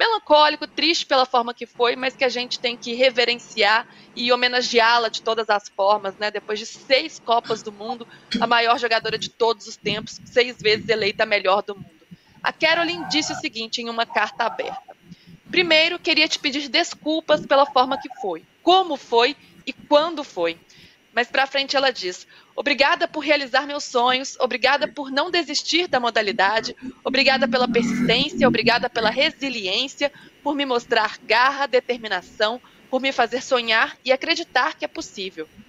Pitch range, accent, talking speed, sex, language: 230-290 Hz, Brazilian, 165 wpm, female, Portuguese